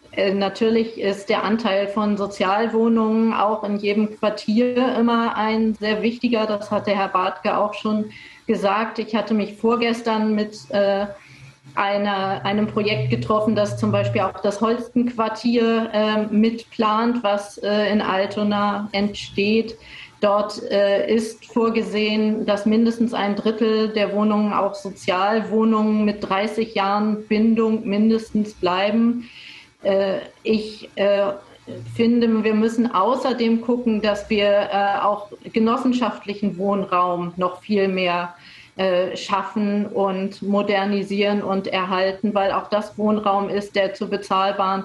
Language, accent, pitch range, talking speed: German, German, 200-220 Hz, 120 wpm